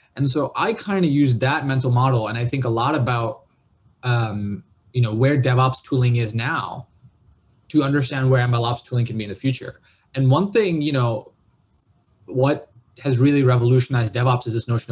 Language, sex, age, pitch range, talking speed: English, male, 20-39, 115-135 Hz, 185 wpm